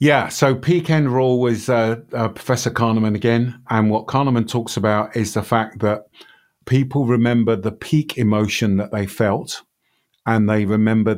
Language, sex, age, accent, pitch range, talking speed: English, male, 50-69, British, 100-125 Hz, 165 wpm